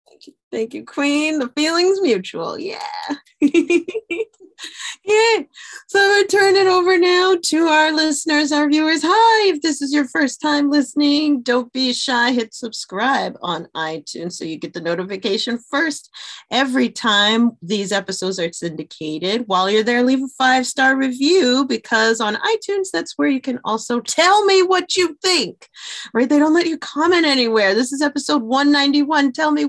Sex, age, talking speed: female, 30-49, 170 wpm